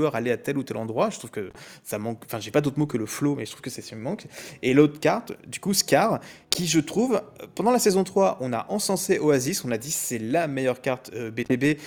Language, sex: French, male